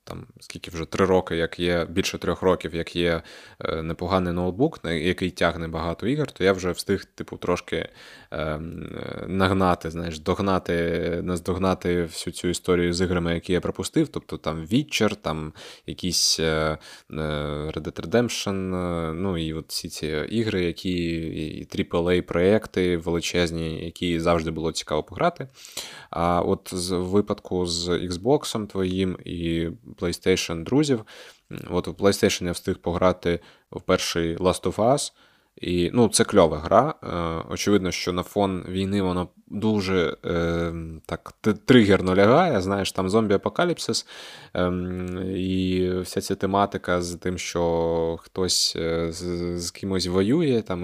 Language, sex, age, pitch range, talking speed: Ukrainian, male, 20-39, 85-95 Hz, 140 wpm